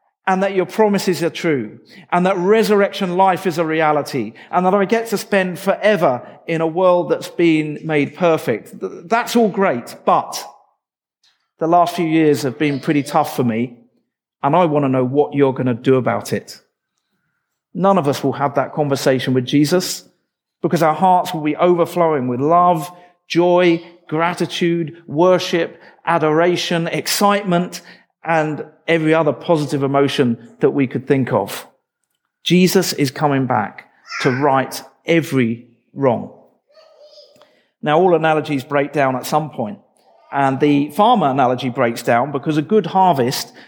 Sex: male